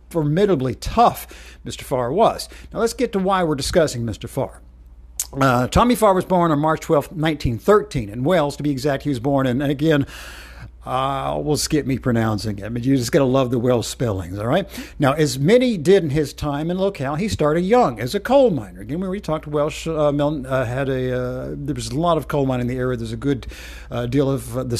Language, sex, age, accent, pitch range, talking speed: English, male, 50-69, American, 125-160 Hz, 230 wpm